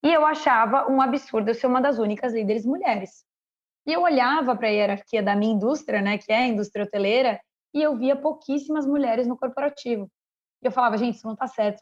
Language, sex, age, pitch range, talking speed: Portuguese, female, 20-39, 220-270 Hz, 215 wpm